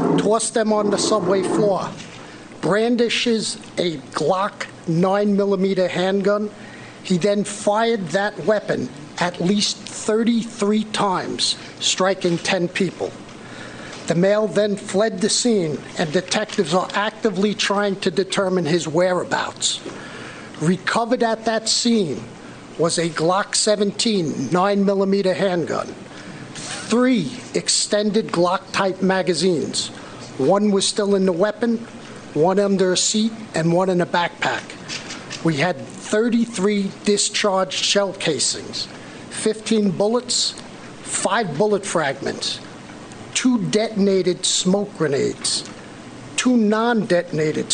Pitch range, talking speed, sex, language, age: 185-215 Hz, 105 wpm, male, English, 50-69